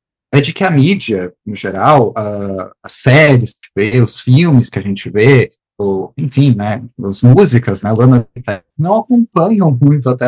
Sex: male